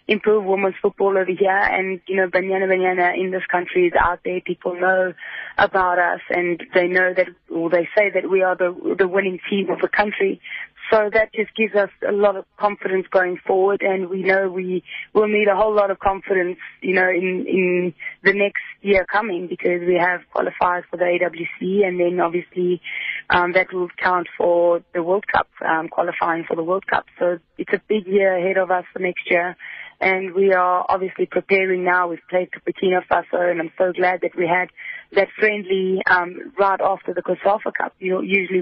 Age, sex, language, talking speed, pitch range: 20-39, female, English, 200 wpm, 180-195 Hz